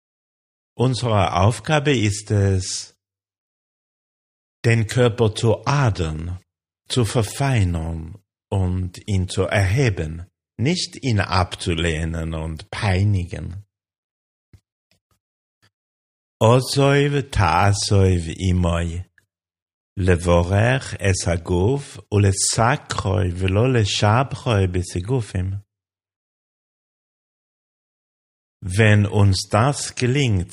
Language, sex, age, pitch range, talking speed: German, male, 50-69, 85-110 Hz, 45 wpm